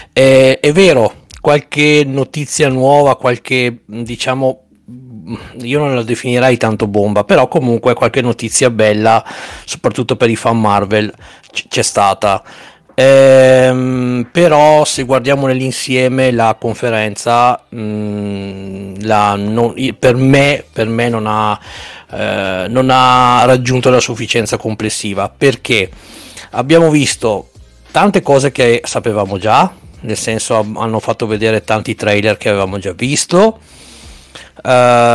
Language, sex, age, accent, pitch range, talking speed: Italian, male, 40-59, native, 110-135 Hz, 120 wpm